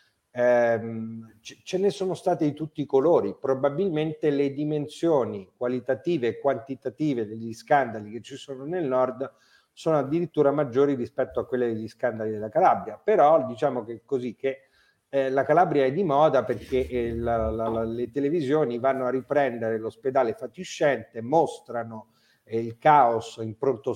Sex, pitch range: male, 120-150 Hz